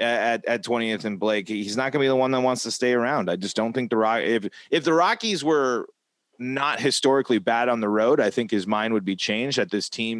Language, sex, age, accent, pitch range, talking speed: English, male, 30-49, American, 110-150 Hz, 260 wpm